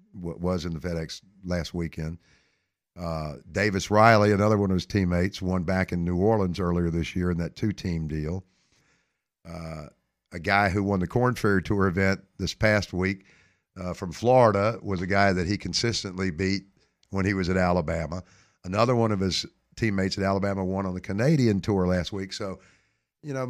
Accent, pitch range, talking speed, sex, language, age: American, 90-110 Hz, 185 wpm, male, English, 50-69